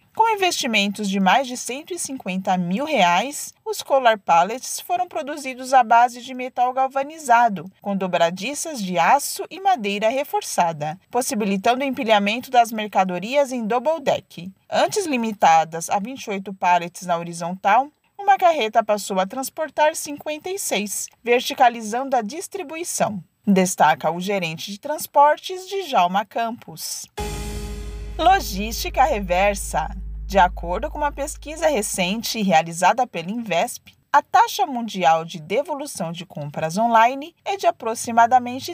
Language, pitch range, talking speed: Portuguese, 190-290 Hz, 125 wpm